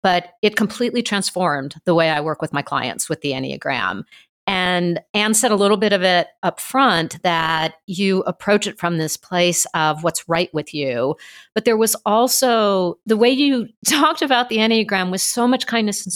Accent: American